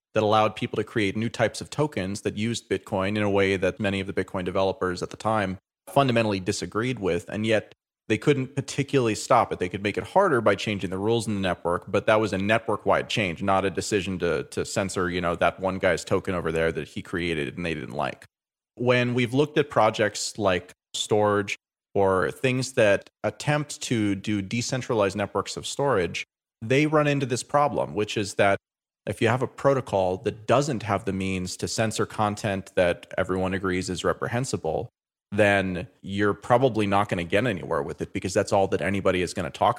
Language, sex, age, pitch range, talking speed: English, male, 30-49, 95-110 Hz, 205 wpm